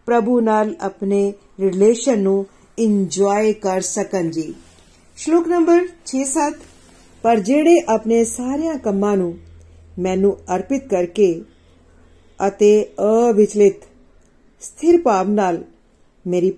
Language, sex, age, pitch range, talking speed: Punjabi, female, 50-69, 185-245 Hz, 100 wpm